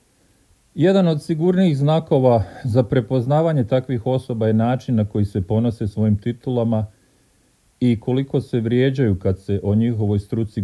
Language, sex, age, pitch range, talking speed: Croatian, male, 40-59, 105-145 Hz, 140 wpm